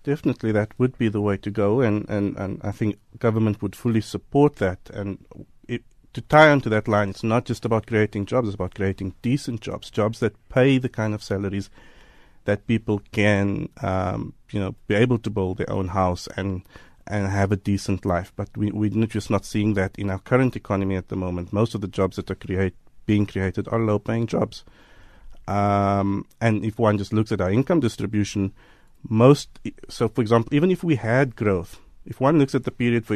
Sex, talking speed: male, 205 wpm